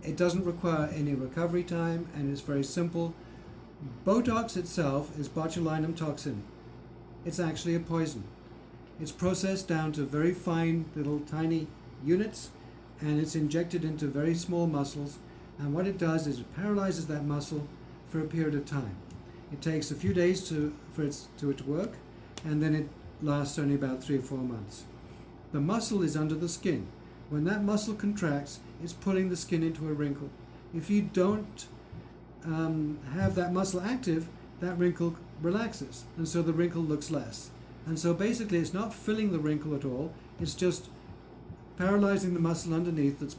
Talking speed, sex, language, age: 165 wpm, male, English, 60-79